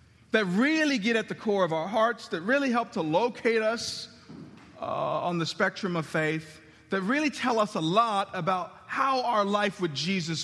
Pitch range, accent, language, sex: 140-205 Hz, American, English, male